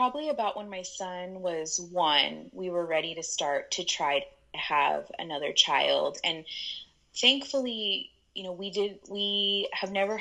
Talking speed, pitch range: 160 wpm, 175-215 Hz